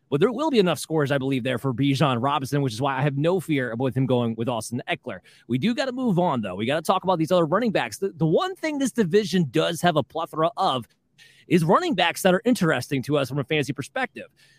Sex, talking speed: male, 265 wpm